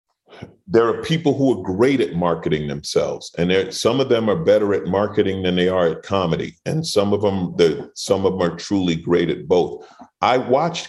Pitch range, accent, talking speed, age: 80-100 Hz, American, 185 wpm, 40-59